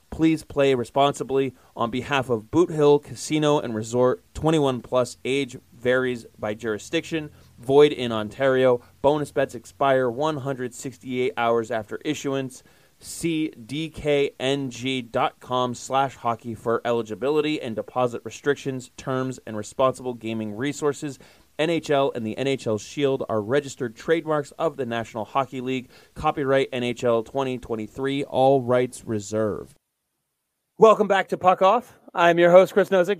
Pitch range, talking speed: 125-165 Hz, 125 wpm